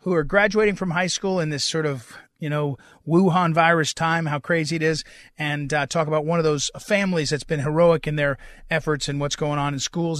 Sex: male